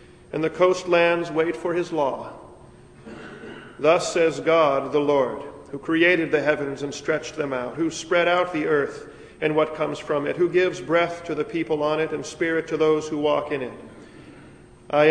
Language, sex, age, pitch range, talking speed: English, male, 40-59, 150-180 Hz, 185 wpm